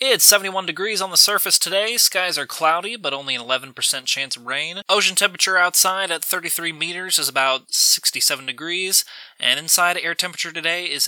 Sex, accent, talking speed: male, American, 180 wpm